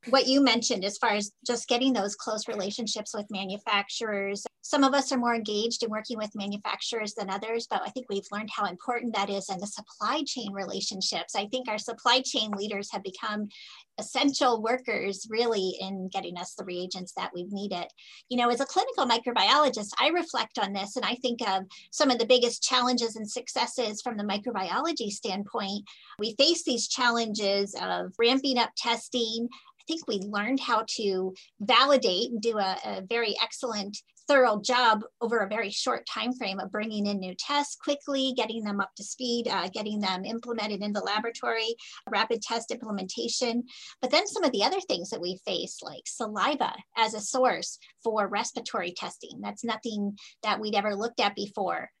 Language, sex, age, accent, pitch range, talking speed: English, female, 30-49, American, 205-245 Hz, 180 wpm